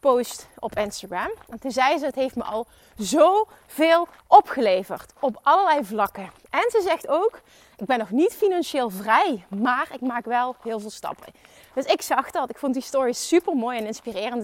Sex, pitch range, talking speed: female, 230-320 Hz, 185 wpm